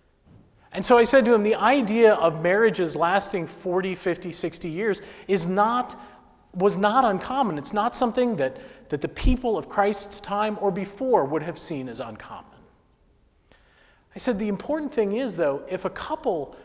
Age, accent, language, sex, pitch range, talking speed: 40-59, American, English, male, 155-210 Hz, 170 wpm